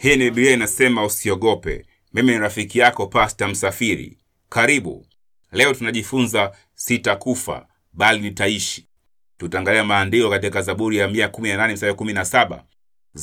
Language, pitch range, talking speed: Swahili, 95-125 Hz, 100 wpm